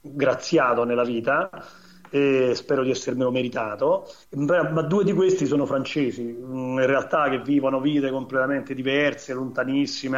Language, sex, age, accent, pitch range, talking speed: Italian, male, 40-59, native, 130-165 Hz, 130 wpm